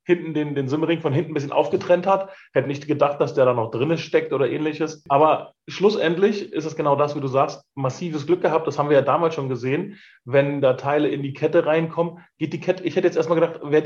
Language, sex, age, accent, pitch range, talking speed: German, male, 30-49, German, 135-170 Hz, 245 wpm